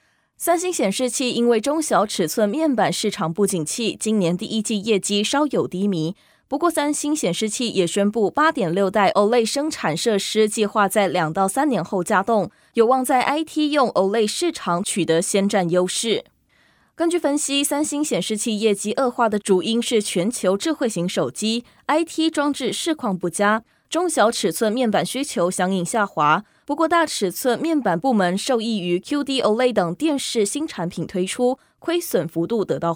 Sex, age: female, 20-39